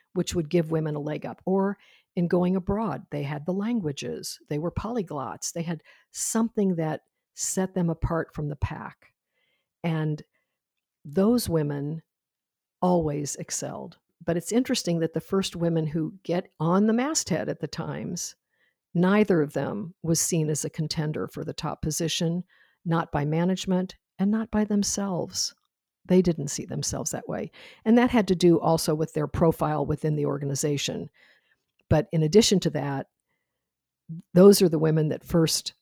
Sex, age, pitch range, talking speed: female, 60-79, 150-185 Hz, 160 wpm